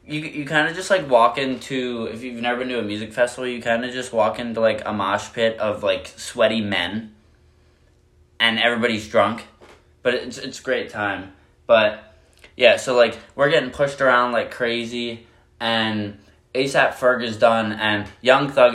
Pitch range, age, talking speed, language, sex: 95-120 Hz, 10-29, 180 wpm, English, male